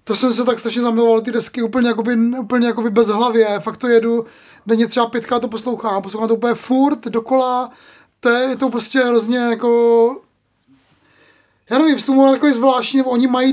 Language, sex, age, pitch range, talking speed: Czech, male, 20-39, 225-250 Hz, 180 wpm